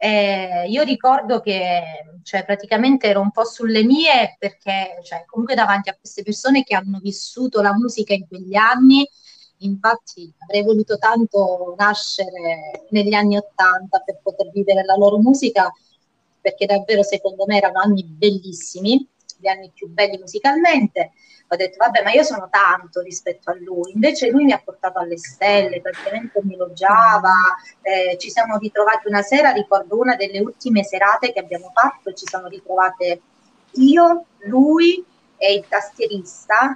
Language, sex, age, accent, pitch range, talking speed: Italian, female, 30-49, native, 195-270 Hz, 150 wpm